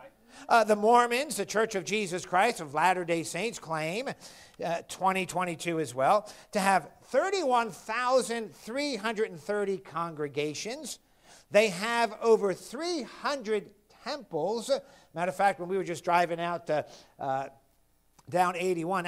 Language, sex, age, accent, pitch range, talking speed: English, male, 50-69, American, 160-215 Hz, 120 wpm